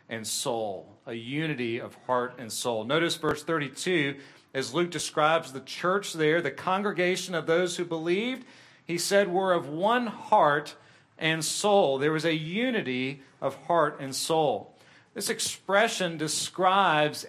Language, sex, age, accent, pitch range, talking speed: English, male, 40-59, American, 140-175 Hz, 145 wpm